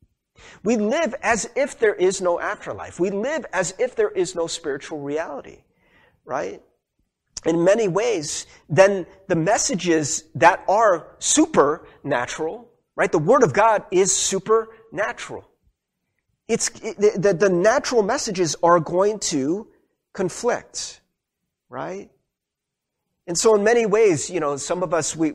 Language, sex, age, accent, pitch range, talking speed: English, male, 30-49, American, 150-215 Hz, 135 wpm